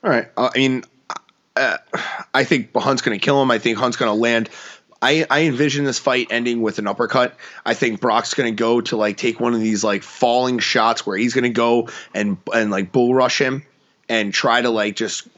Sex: male